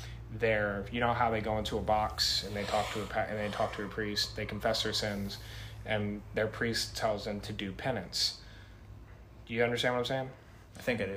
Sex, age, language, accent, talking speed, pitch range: male, 20-39, English, American, 215 wpm, 105-130 Hz